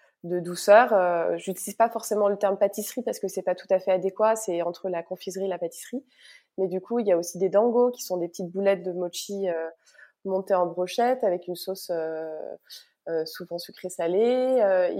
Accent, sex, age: French, female, 20-39